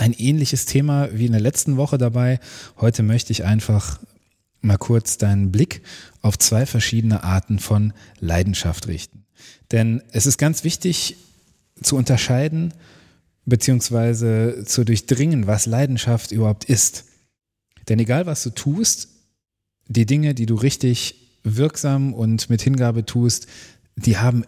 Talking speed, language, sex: 135 wpm, German, male